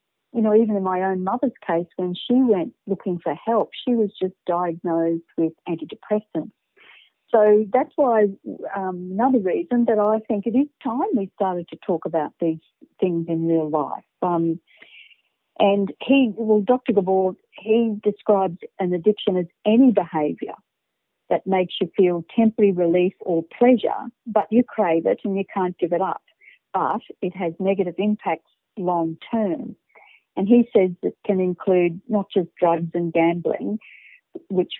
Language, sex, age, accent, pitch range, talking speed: English, female, 50-69, Australian, 180-235 Hz, 160 wpm